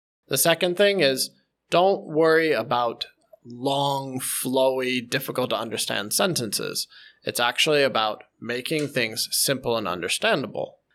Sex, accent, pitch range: male, American, 115-160 Hz